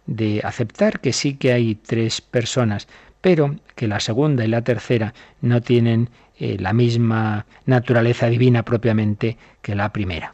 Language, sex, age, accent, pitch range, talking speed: Spanish, male, 50-69, Spanish, 110-130 Hz, 150 wpm